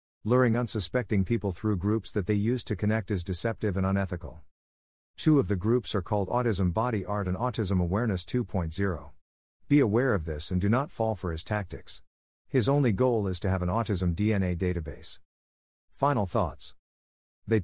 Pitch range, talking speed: 90-115 Hz, 175 wpm